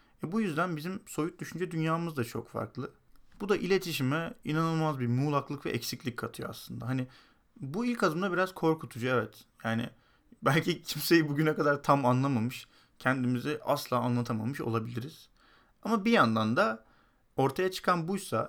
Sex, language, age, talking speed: male, Turkish, 40-59, 145 wpm